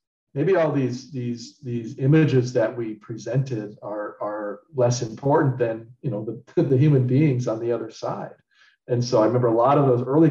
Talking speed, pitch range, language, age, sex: 190 wpm, 120-135 Hz, English, 40-59, male